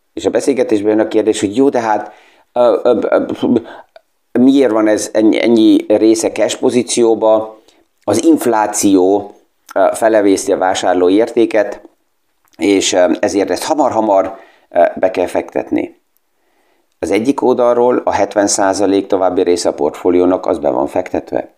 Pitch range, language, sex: 95-140 Hz, Hungarian, male